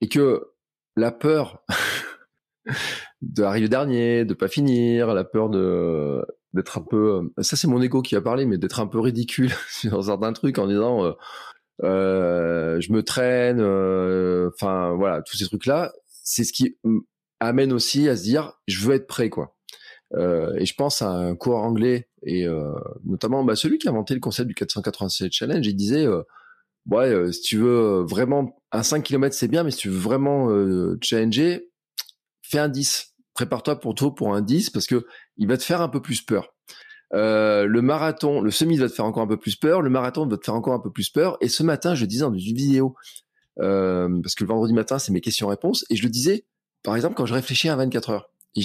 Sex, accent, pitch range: male, French, 105-140 Hz